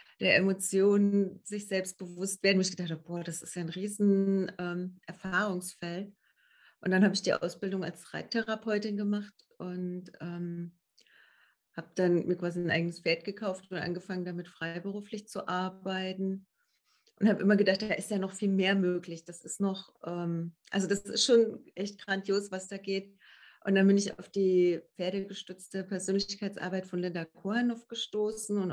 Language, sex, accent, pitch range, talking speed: German, female, German, 180-205 Hz, 165 wpm